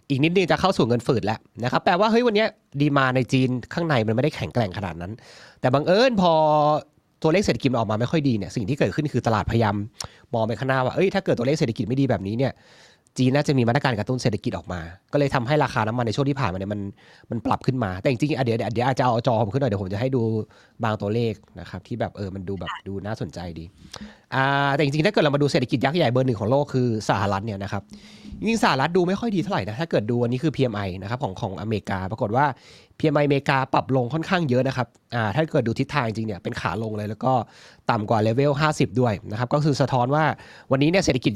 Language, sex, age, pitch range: Thai, male, 30-49, 110-150 Hz